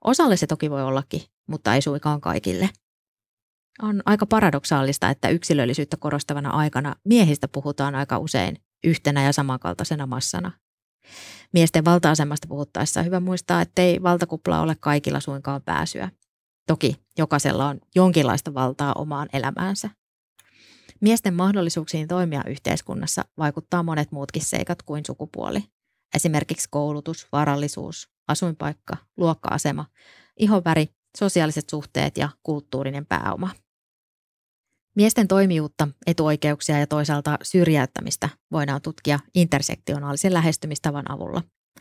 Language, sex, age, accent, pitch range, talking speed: Finnish, female, 20-39, native, 145-175 Hz, 110 wpm